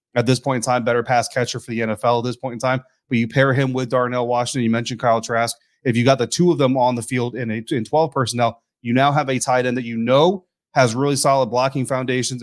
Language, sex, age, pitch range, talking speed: English, male, 30-49, 115-135 Hz, 270 wpm